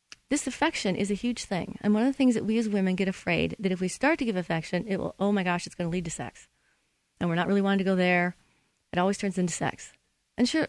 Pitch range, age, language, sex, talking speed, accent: 180-240 Hz, 30-49, English, female, 275 wpm, American